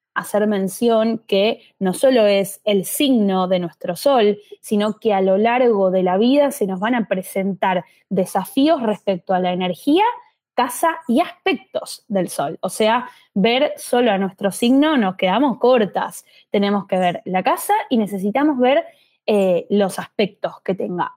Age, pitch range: 10-29, 195-265 Hz